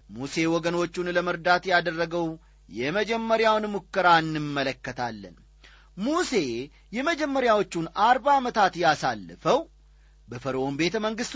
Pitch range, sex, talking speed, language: 145-235 Hz, male, 80 wpm, Amharic